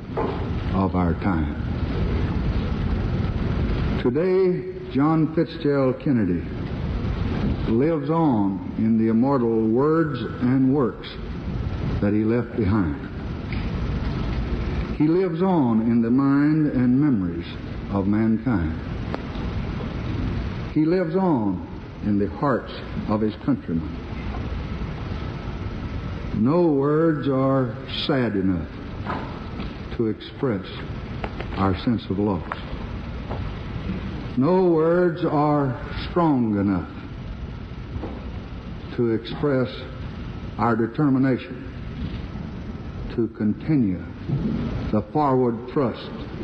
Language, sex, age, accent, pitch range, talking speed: English, male, 60-79, American, 95-135 Hz, 80 wpm